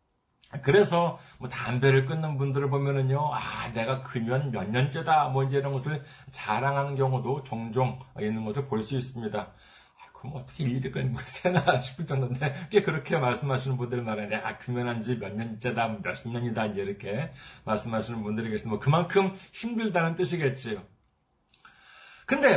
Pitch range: 130-185 Hz